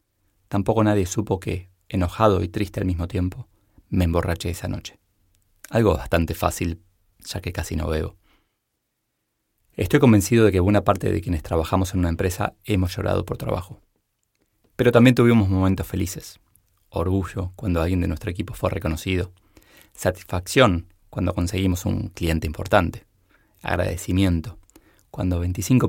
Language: Spanish